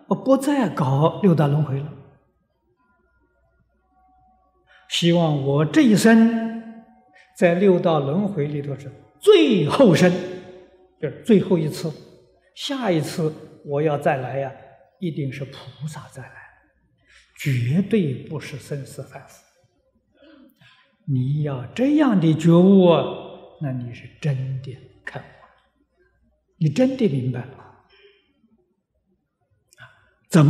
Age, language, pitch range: 50-69, Chinese, 140-210 Hz